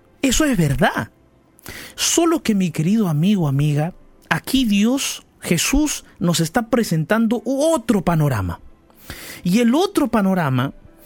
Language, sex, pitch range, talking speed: Spanish, male, 180-265 Hz, 115 wpm